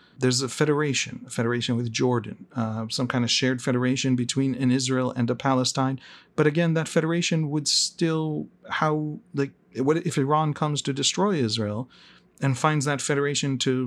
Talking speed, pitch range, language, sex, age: 170 wpm, 120-150 Hz, English, male, 40-59